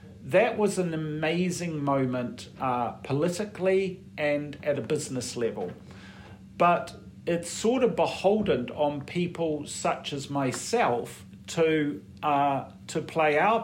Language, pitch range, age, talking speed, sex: English, 125-155 Hz, 50-69, 120 wpm, male